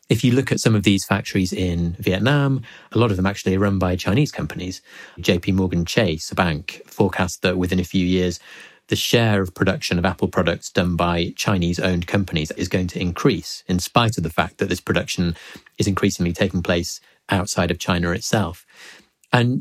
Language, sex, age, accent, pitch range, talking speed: English, male, 30-49, British, 90-110 Hz, 195 wpm